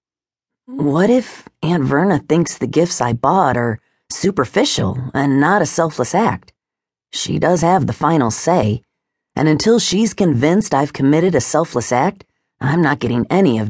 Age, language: 40-59, English